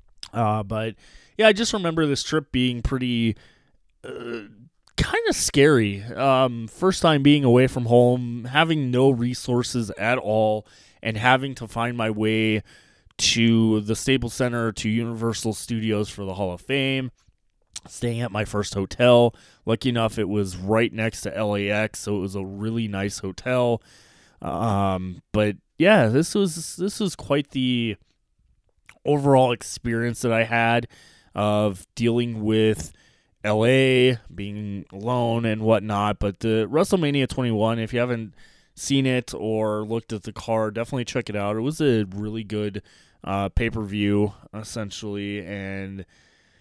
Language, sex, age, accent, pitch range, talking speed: English, male, 20-39, American, 105-125 Hz, 145 wpm